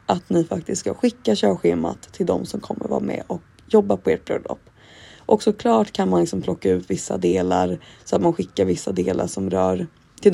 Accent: native